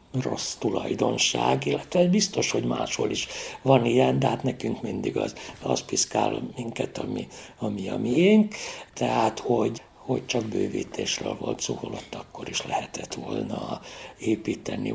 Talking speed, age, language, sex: 130 wpm, 60-79, Hungarian, male